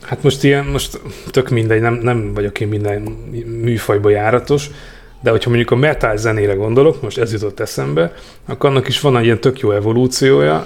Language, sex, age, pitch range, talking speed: Hungarian, male, 30-49, 110-135 Hz, 185 wpm